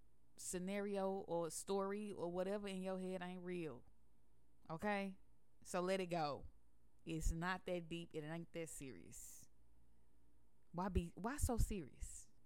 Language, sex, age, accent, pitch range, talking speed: English, female, 10-29, American, 130-195 Hz, 140 wpm